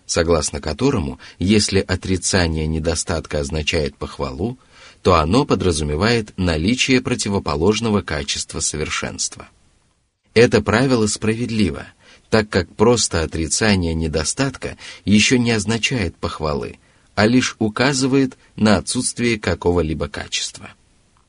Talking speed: 95 wpm